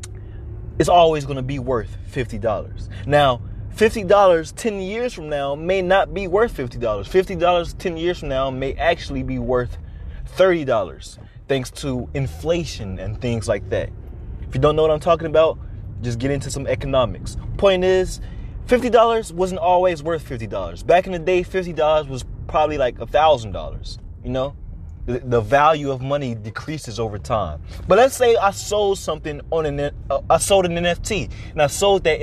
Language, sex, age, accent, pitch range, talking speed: English, male, 20-39, American, 115-170 Hz, 170 wpm